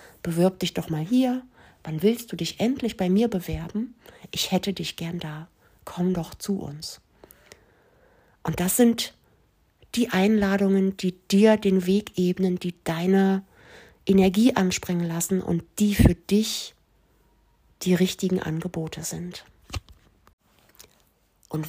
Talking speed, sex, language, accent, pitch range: 125 wpm, female, German, German, 170-215 Hz